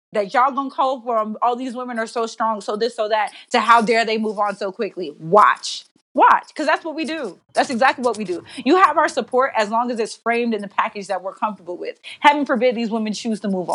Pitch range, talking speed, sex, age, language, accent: 195-250 Hz, 255 wpm, female, 20-39, English, American